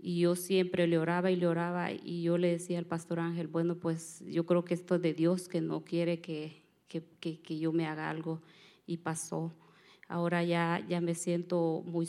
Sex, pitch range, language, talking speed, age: female, 170-180 Hz, English, 215 wpm, 30-49